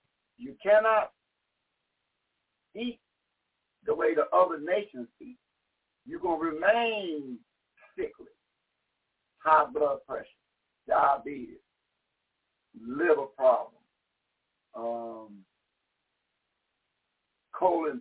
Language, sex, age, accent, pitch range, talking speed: English, male, 60-79, American, 185-295 Hz, 75 wpm